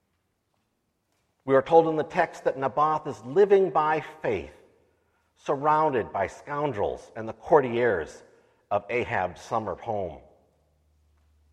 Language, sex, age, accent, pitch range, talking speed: English, male, 50-69, American, 100-160 Hz, 115 wpm